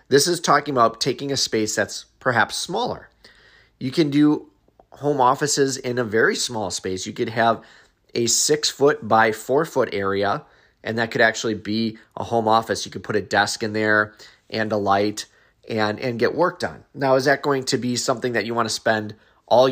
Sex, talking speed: male, 200 wpm